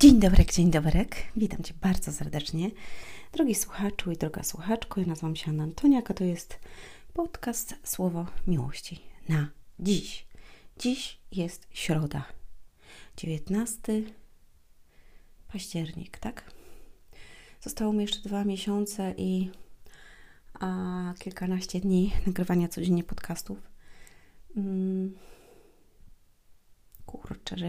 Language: Polish